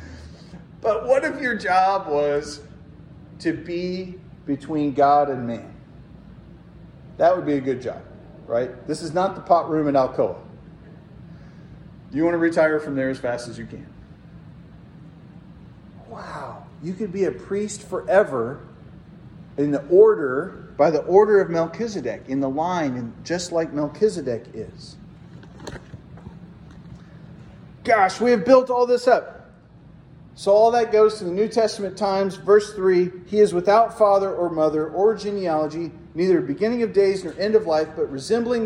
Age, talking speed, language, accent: 40-59, 150 wpm, English, American